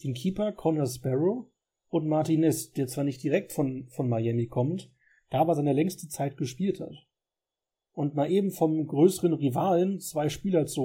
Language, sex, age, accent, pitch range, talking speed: German, male, 40-59, German, 140-180 Hz, 165 wpm